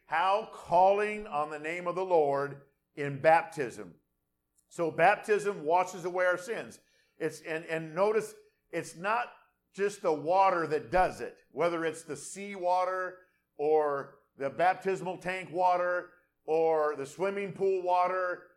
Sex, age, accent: male, 50-69, American